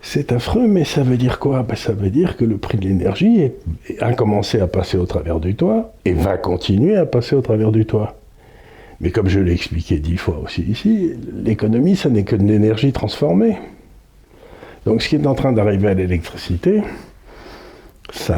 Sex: male